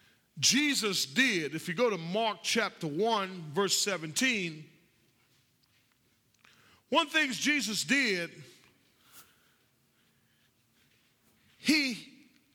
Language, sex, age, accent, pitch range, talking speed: English, male, 40-59, American, 170-265 Hz, 75 wpm